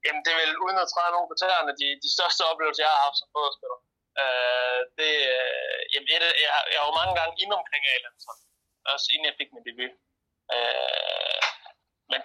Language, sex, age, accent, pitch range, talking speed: Danish, male, 30-49, native, 130-155 Hz, 185 wpm